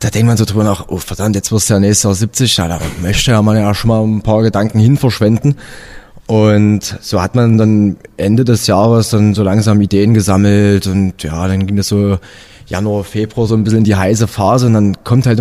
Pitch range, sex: 100-115 Hz, male